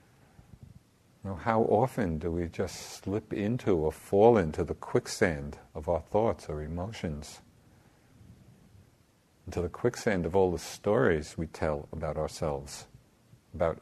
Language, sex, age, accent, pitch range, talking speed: English, male, 50-69, American, 85-110 Hz, 125 wpm